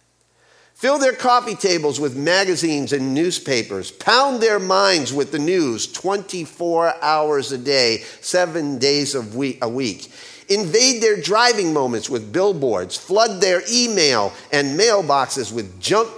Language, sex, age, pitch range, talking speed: English, male, 50-69, 135-185 Hz, 130 wpm